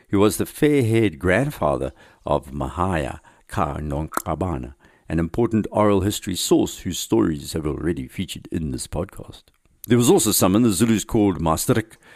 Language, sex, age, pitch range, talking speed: English, male, 60-79, 85-120 Hz, 150 wpm